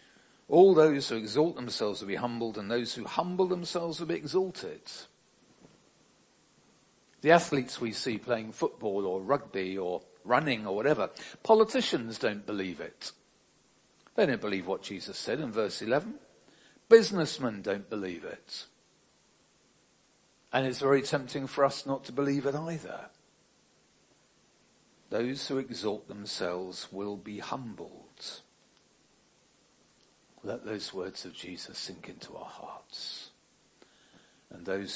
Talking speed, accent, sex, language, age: 125 wpm, British, male, English, 50-69